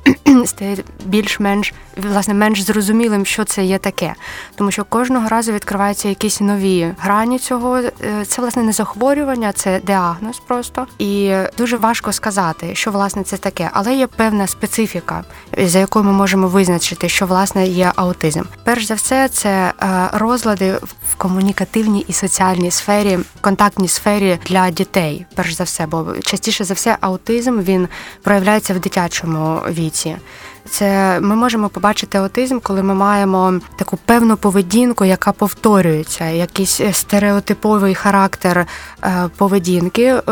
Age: 20-39